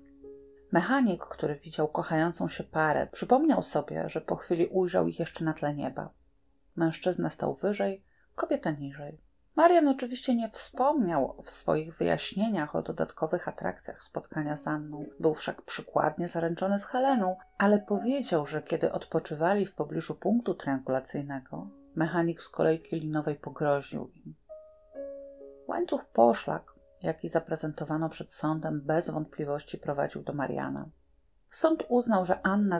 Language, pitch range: Polish, 150-205 Hz